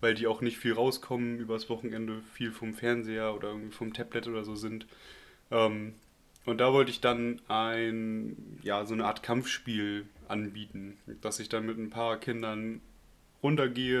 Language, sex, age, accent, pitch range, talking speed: German, male, 30-49, German, 110-125 Hz, 165 wpm